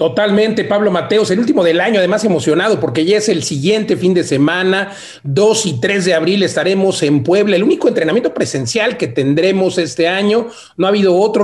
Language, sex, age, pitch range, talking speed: Spanish, male, 40-59, 160-200 Hz, 195 wpm